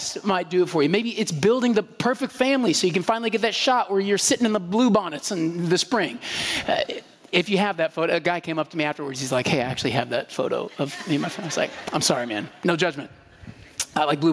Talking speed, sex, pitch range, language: 270 wpm, male, 170-245 Hz, Russian